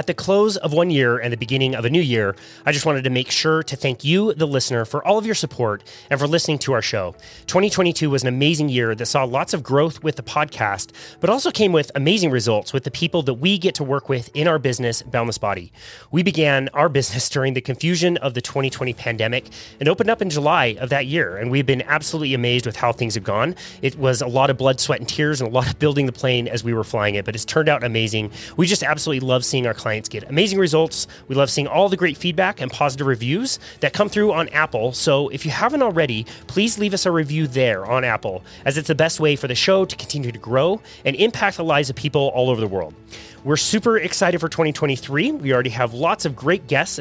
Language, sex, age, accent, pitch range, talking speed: English, male, 30-49, American, 125-170 Hz, 250 wpm